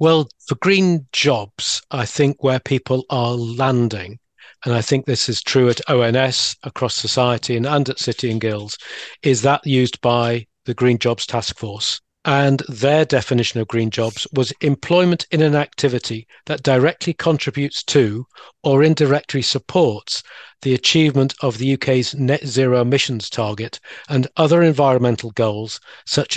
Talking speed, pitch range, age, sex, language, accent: 150 wpm, 120-145 Hz, 40-59, male, English, British